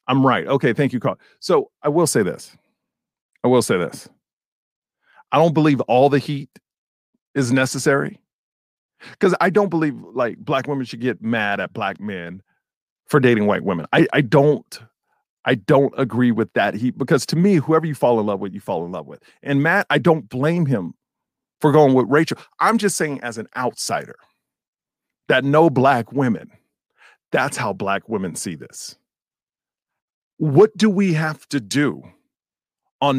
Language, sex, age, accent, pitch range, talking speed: English, male, 40-59, American, 130-180 Hz, 175 wpm